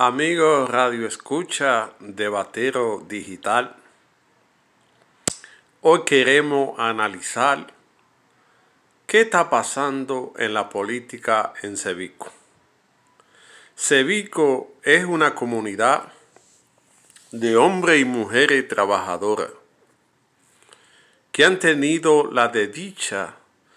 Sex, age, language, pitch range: male, 50-69, Spanish, 115-155 Hz